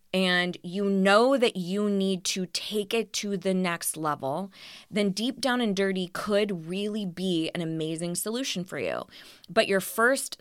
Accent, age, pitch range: American, 20-39, 170-205 Hz